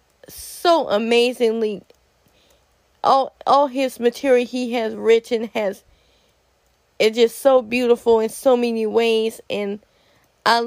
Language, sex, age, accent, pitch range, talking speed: English, female, 20-39, American, 235-260 Hz, 110 wpm